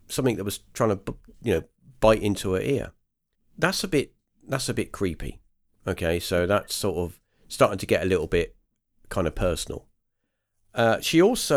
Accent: British